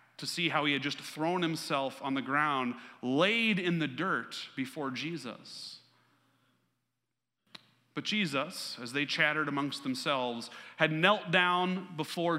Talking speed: 135 wpm